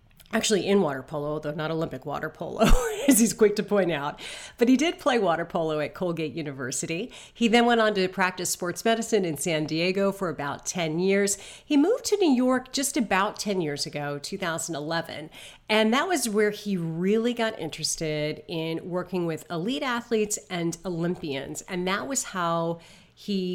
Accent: American